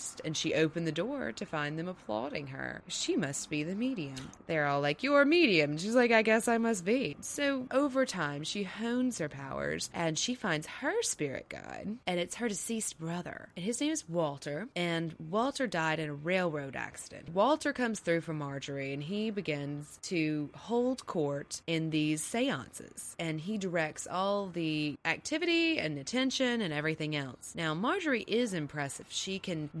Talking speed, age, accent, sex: 180 wpm, 20-39, American, female